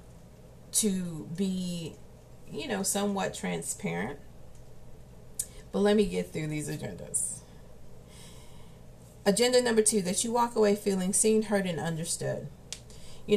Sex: female